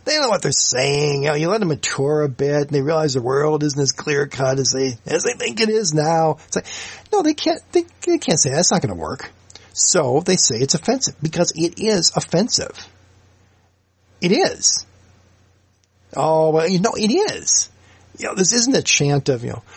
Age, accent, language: 50-69, American, English